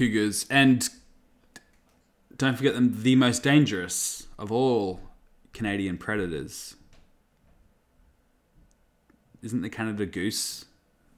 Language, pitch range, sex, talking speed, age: English, 110-145 Hz, male, 80 wpm, 20-39